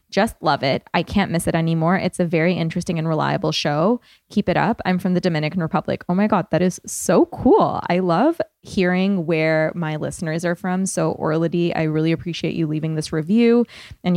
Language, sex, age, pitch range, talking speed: English, female, 20-39, 160-195 Hz, 205 wpm